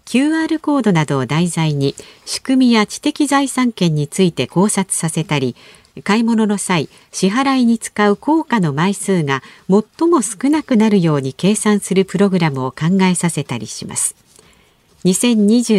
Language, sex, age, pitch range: Japanese, female, 50-69, 155-230 Hz